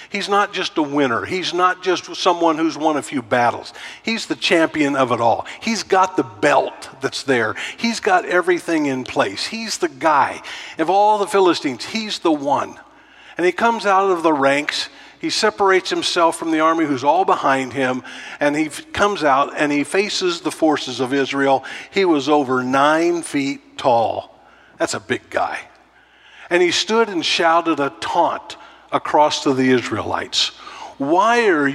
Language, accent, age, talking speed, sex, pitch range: English, American, 50-69, 175 wpm, male, 145-220 Hz